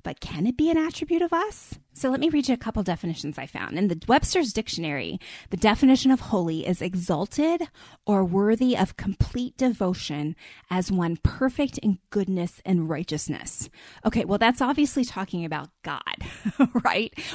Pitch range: 185-260 Hz